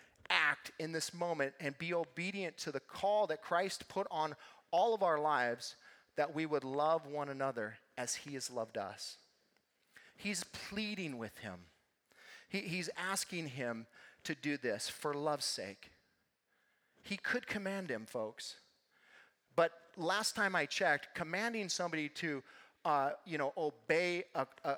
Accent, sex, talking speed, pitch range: American, male, 150 wpm, 140-190 Hz